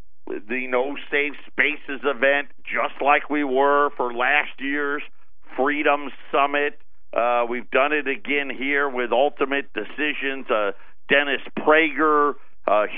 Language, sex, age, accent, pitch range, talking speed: English, male, 50-69, American, 130-155 Hz, 125 wpm